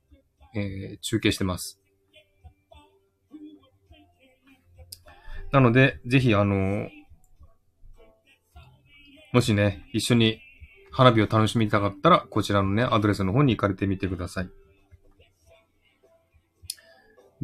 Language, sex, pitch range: Japanese, male, 95-130 Hz